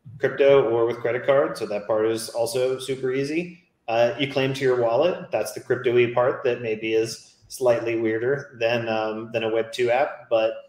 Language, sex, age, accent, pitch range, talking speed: English, male, 30-49, American, 110-130 Hz, 190 wpm